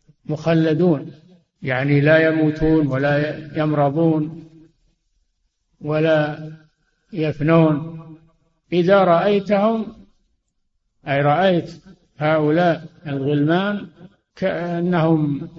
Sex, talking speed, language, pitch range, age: male, 60 wpm, Arabic, 145-165 Hz, 60-79